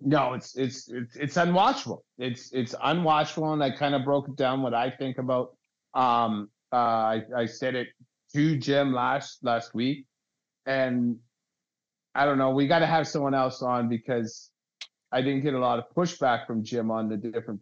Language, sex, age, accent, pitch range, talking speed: English, male, 30-49, American, 115-140 Hz, 185 wpm